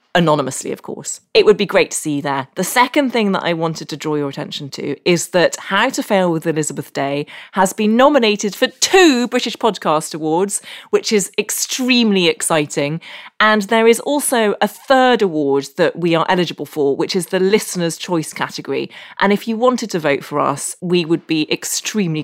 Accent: British